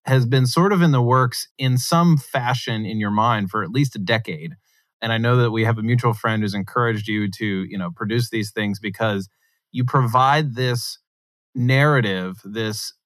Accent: American